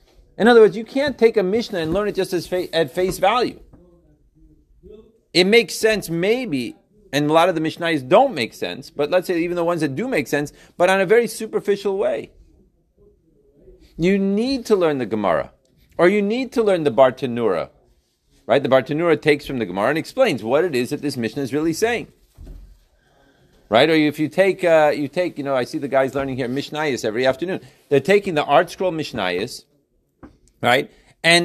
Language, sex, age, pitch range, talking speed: English, male, 40-59, 160-215 Hz, 200 wpm